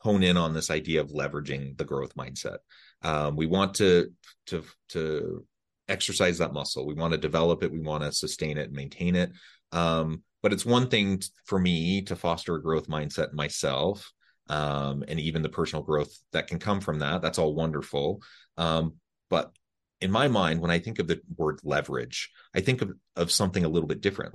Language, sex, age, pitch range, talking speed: English, male, 30-49, 75-85 Hz, 200 wpm